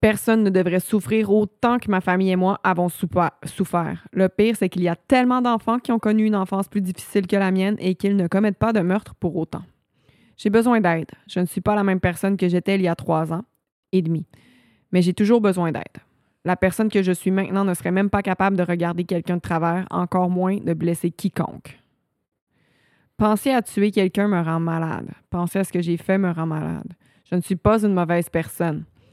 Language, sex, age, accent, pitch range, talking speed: French, female, 20-39, Canadian, 175-205 Hz, 220 wpm